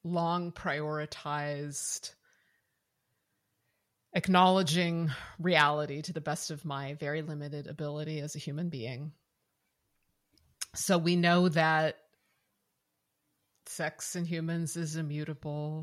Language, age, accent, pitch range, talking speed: English, 30-49, American, 145-170 Hz, 90 wpm